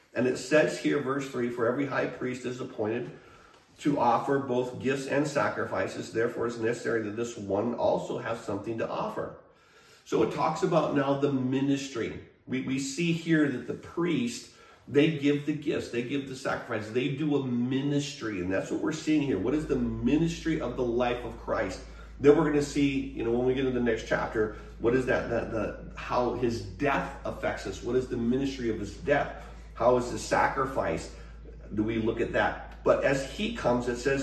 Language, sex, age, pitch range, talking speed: English, male, 40-59, 120-145 Hz, 200 wpm